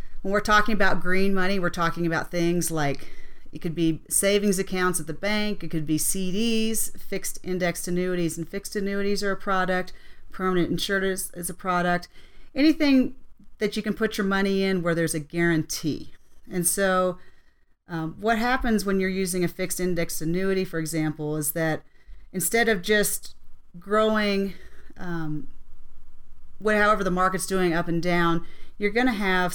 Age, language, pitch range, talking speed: 40-59, English, 170-200 Hz, 165 wpm